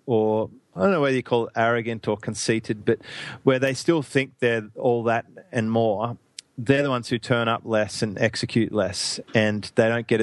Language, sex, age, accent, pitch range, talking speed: English, male, 30-49, Australian, 110-125 Hz, 205 wpm